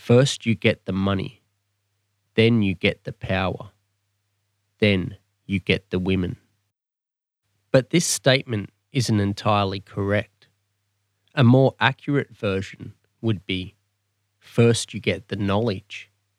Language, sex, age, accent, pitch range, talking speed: English, male, 20-39, Australian, 100-125 Hz, 115 wpm